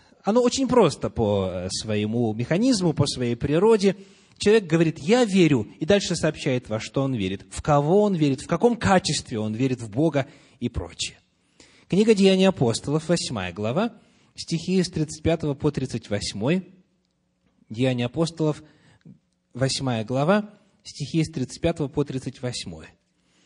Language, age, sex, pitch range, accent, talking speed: Russian, 30-49, male, 125-190 Hz, native, 135 wpm